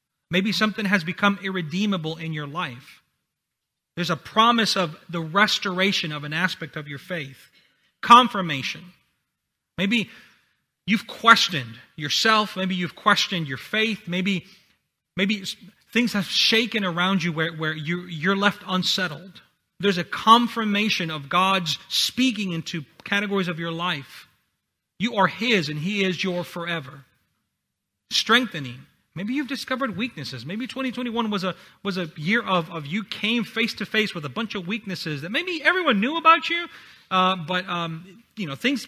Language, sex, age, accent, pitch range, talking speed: English, male, 40-59, American, 155-205 Hz, 150 wpm